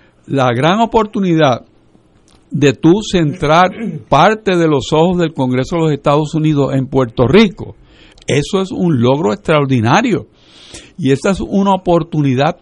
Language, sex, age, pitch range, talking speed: Spanish, male, 60-79, 140-190 Hz, 140 wpm